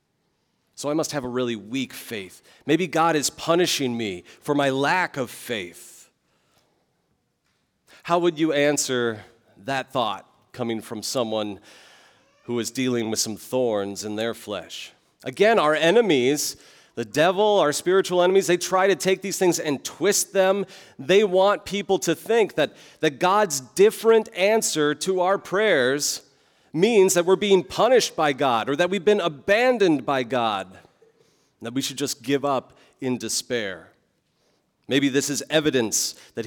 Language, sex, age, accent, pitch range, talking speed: English, male, 40-59, American, 130-185 Hz, 155 wpm